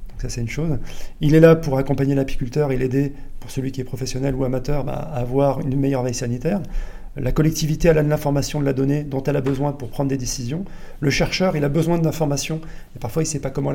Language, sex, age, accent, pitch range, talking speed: French, male, 40-59, French, 130-160 Hz, 240 wpm